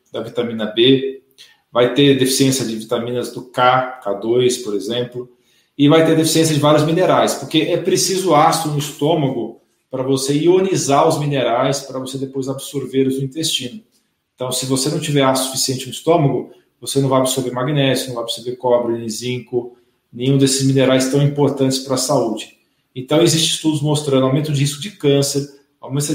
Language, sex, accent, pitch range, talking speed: Portuguese, male, Brazilian, 130-155 Hz, 170 wpm